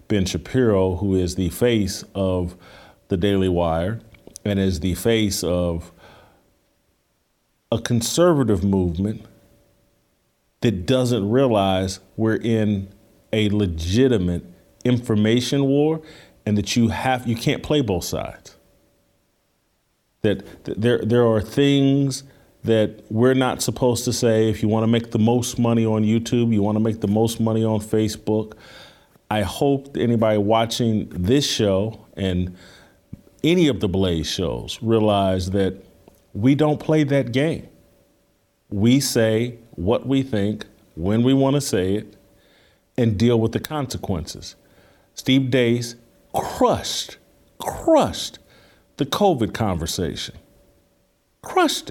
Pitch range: 100-135 Hz